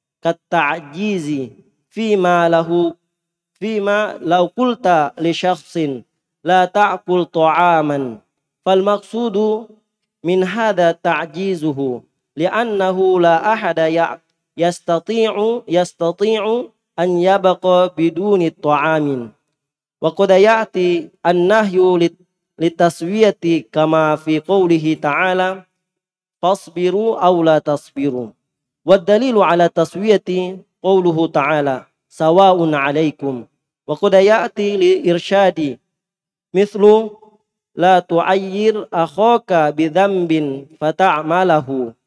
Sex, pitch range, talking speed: male, 165-195 Hz, 75 wpm